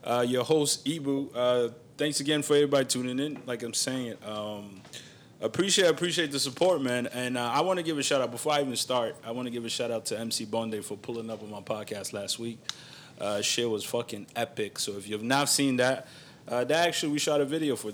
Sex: male